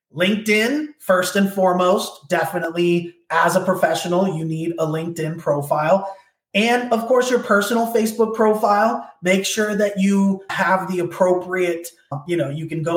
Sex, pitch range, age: male, 165-195 Hz, 20-39